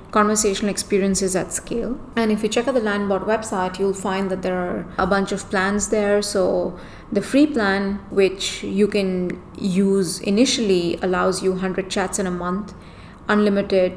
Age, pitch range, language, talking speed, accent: 30-49, 185-210 Hz, English, 170 wpm, Indian